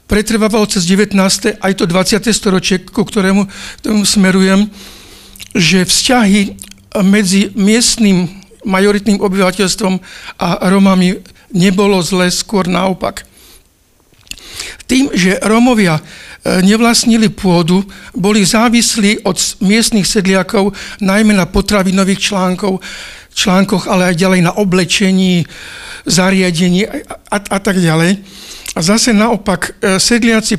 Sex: male